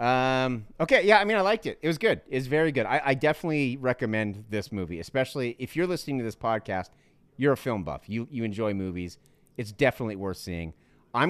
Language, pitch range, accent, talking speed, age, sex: English, 95-135 Hz, American, 210 wpm, 30-49, male